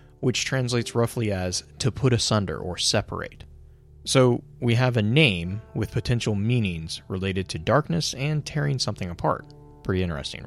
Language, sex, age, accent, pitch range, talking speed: English, male, 30-49, American, 85-125 Hz, 150 wpm